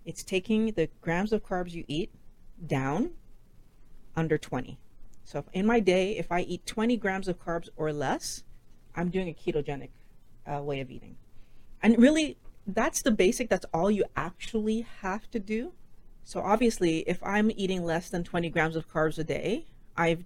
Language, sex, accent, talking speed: English, female, American, 170 wpm